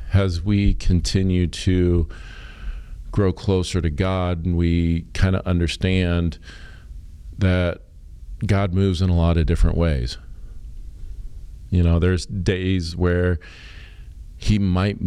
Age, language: 50-69, English